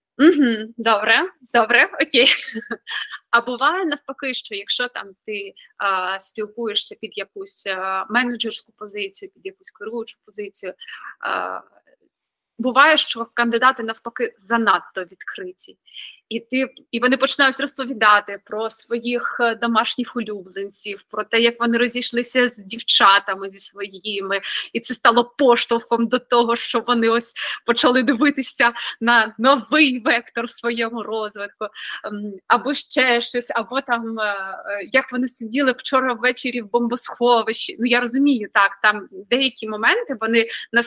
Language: Ukrainian